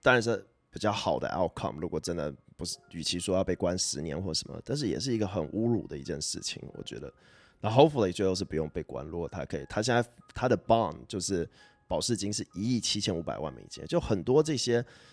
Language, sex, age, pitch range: Chinese, male, 20-39, 90-120 Hz